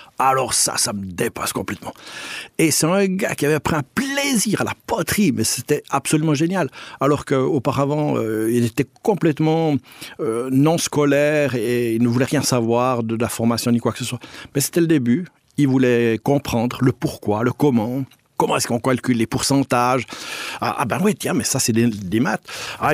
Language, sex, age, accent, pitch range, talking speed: French, male, 60-79, French, 120-155 Hz, 195 wpm